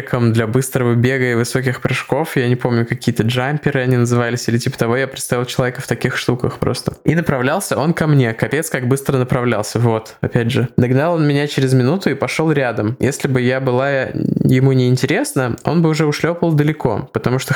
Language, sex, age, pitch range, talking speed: Russian, male, 20-39, 120-145 Hz, 195 wpm